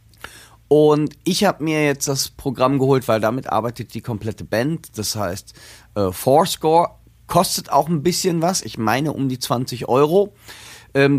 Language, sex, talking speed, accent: German, male, 160 wpm, German